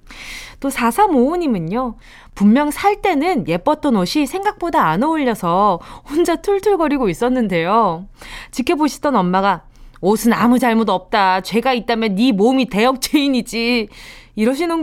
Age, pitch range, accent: 20-39, 225-335 Hz, native